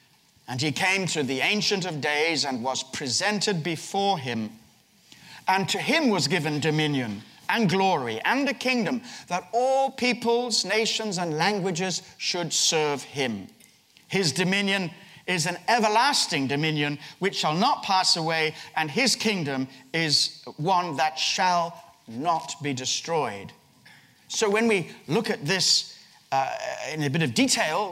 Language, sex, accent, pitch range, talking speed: English, male, British, 155-205 Hz, 140 wpm